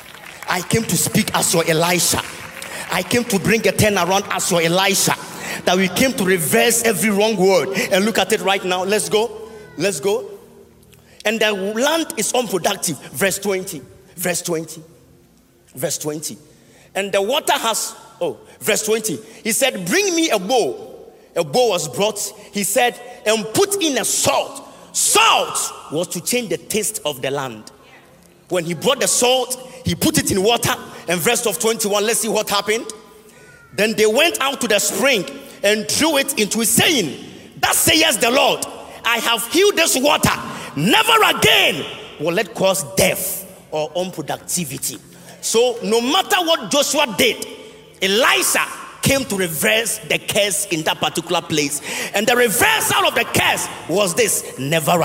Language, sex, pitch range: English, male, 180-245 Hz